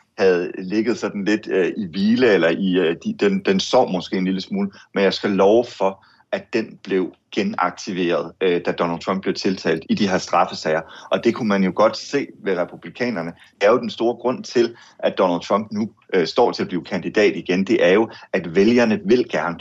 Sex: male